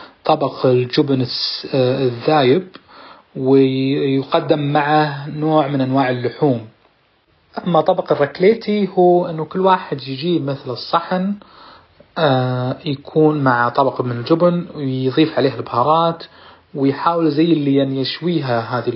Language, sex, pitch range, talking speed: Arabic, male, 135-170 Hz, 100 wpm